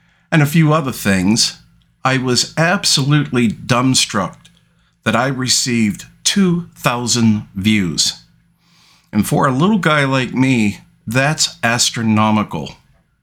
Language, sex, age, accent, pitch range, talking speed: English, male, 50-69, American, 115-150 Hz, 105 wpm